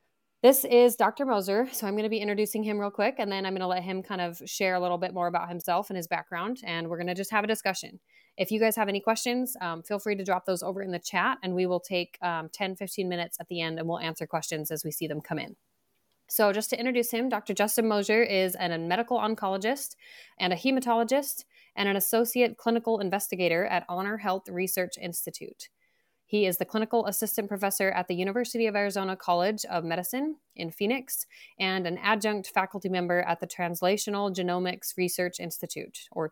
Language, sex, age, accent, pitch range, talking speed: English, female, 20-39, American, 175-220 Hz, 215 wpm